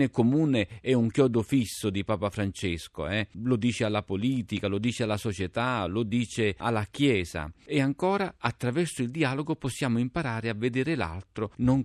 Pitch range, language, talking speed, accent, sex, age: 105-140 Hz, Italian, 160 wpm, native, male, 40-59